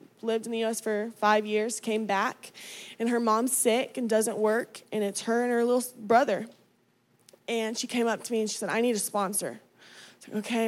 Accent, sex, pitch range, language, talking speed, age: American, female, 210-250 Hz, English, 220 wpm, 20-39